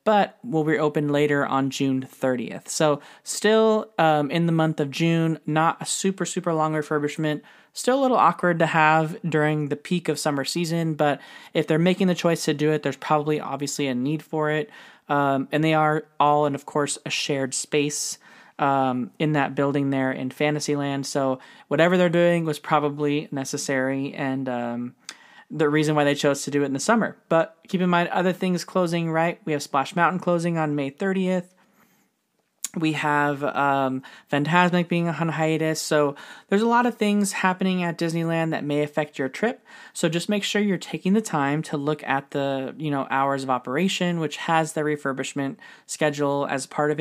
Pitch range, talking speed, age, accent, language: 140-175 Hz, 190 wpm, 20-39, American, English